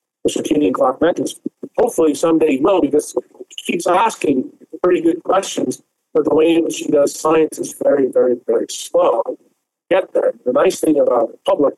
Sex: male